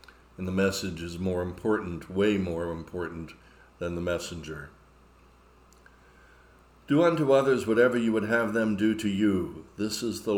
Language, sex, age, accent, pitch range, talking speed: English, male, 60-79, American, 65-105 Hz, 150 wpm